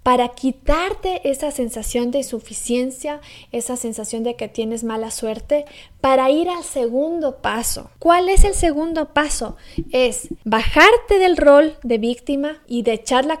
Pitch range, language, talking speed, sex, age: 235-295 Hz, Spanish, 150 wpm, female, 30-49